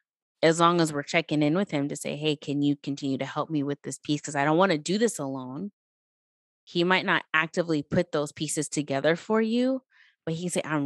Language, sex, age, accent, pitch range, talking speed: English, female, 20-39, American, 140-170 Hz, 240 wpm